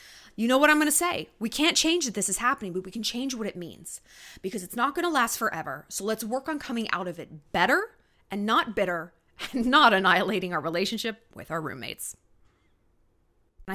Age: 20-39